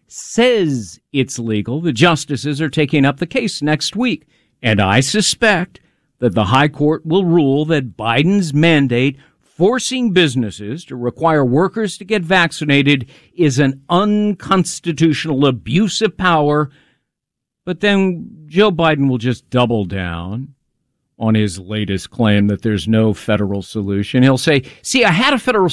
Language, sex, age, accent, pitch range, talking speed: English, male, 50-69, American, 130-200 Hz, 145 wpm